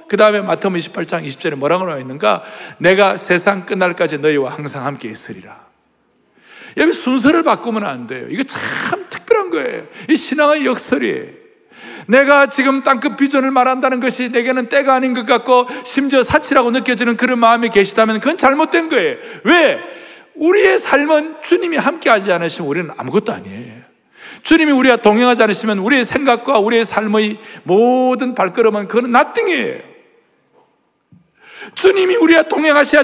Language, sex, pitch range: Korean, male, 230-330 Hz